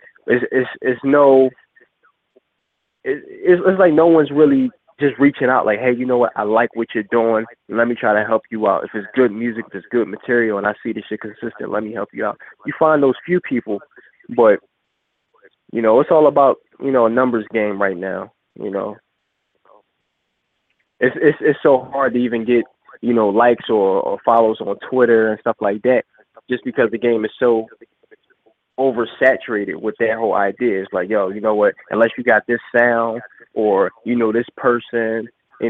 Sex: male